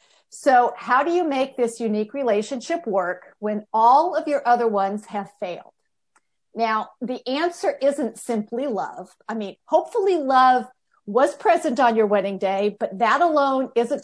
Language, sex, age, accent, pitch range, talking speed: English, female, 50-69, American, 215-285 Hz, 160 wpm